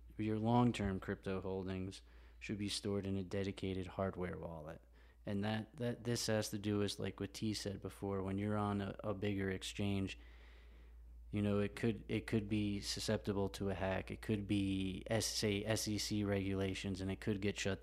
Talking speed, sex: 180 wpm, male